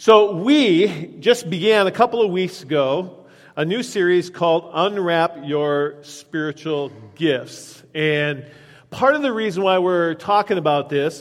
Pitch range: 150-195 Hz